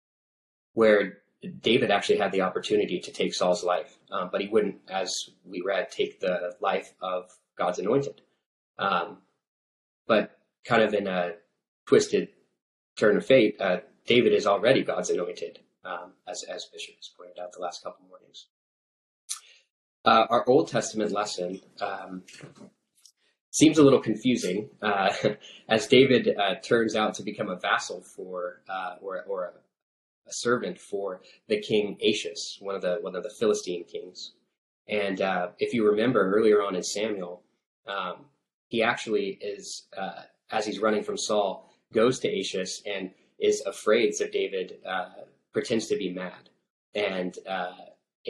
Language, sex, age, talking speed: English, male, 20-39, 155 wpm